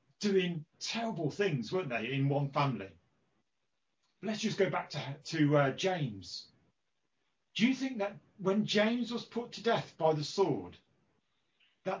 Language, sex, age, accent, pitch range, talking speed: English, male, 40-59, British, 135-180 Hz, 150 wpm